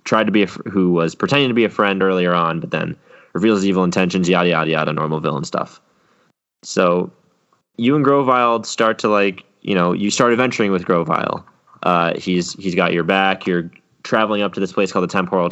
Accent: American